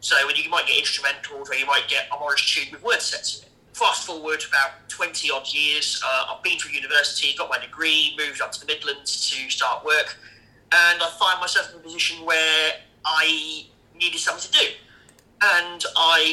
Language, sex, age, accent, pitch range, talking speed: English, male, 30-49, British, 155-185 Hz, 185 wpm